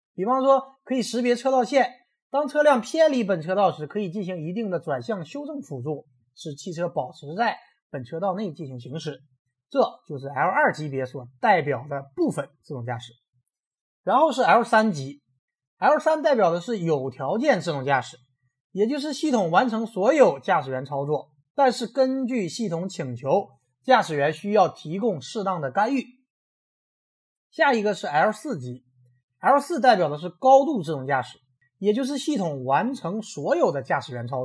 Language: Chinese